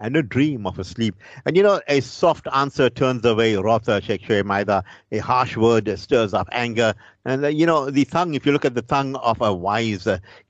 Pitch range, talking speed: 105-125 Hz, 210 wpm